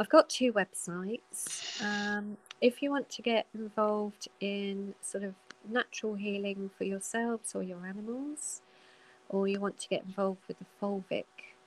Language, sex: English, female